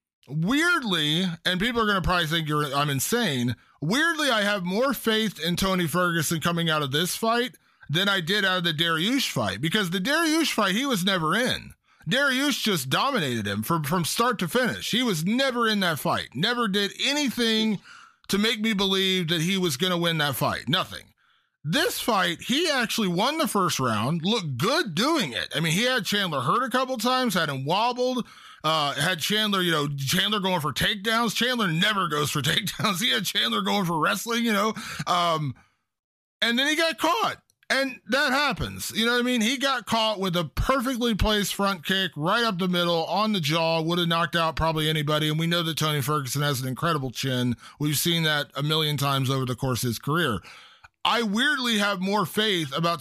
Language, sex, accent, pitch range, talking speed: English, male, American, 160-225 Hz, 205 wpm